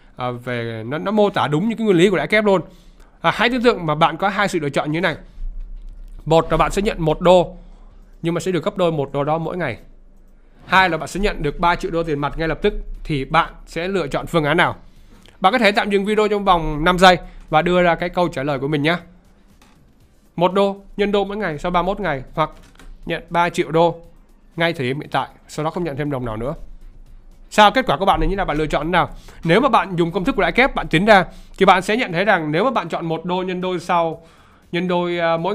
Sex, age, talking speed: male, 20-39, 265 wpm